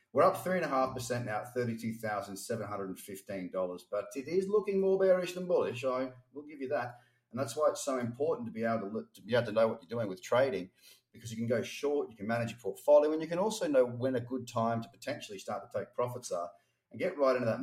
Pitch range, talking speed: 115-140 Hz, 275 wpm